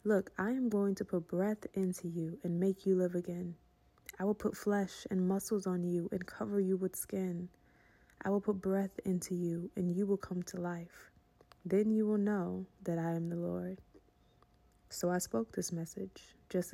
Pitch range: 175-200 Hz